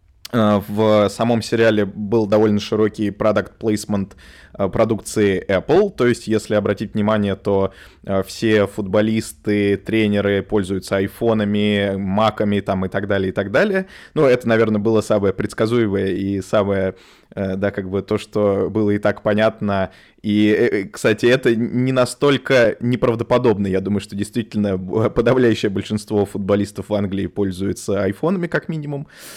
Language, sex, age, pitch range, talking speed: Russian, male, 20-39, 100-120 Hz, 135 wpm